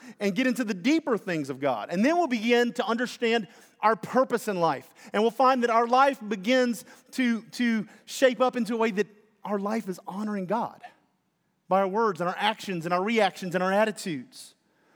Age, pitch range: 40-59, 210-265 Hz